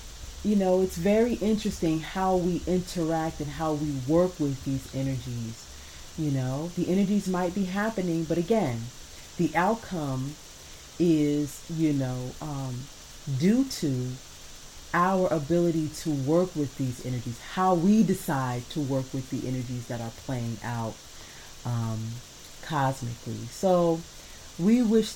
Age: 40-59